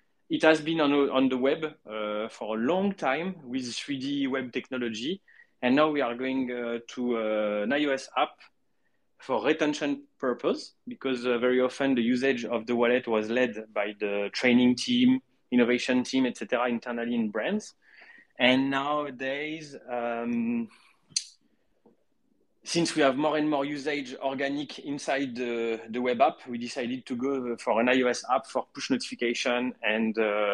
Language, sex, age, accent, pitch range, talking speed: English, male, 20-39, French, 115-150 Hz, 155 wpm